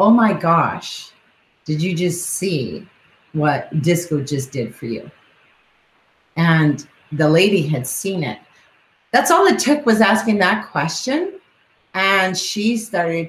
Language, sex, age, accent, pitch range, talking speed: English, female, 30-49, American, 160-205 Hz, 135 wpm